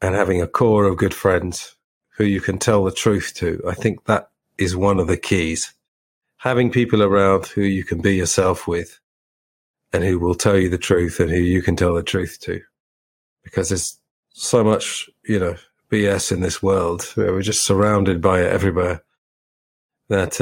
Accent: British